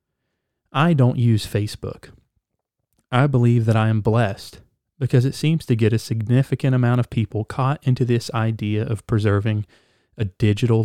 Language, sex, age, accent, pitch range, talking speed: English, male, 30-49, American, 110-130 Hz, 155 wpm